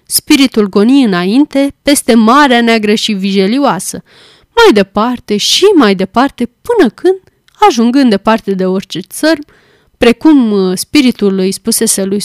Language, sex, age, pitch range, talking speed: Romanian, female, 20-39, 205-280 Hz, 125 wpm